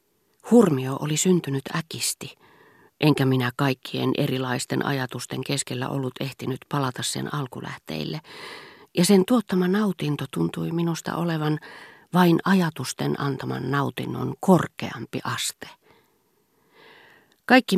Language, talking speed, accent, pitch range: Finnish, 100 wpm, native, 125-170 Hz